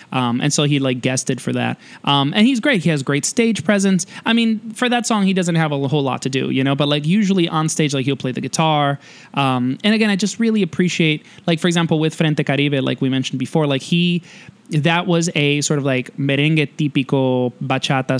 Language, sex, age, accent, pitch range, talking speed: English, male, 20-39, American, 135-180 Hz, 230 wpm